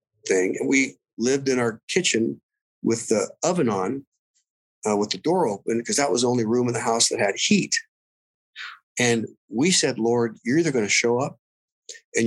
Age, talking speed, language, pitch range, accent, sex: 50-69, 190 wpm, English, 110-145 Hz, American, male